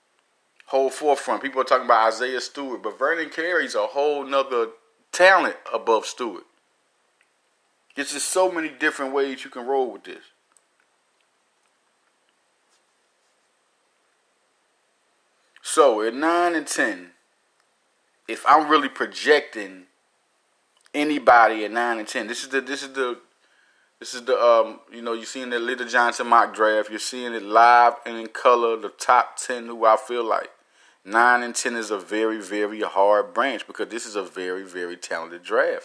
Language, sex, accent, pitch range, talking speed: English, male, American, 115-145 Hz, 155 wpm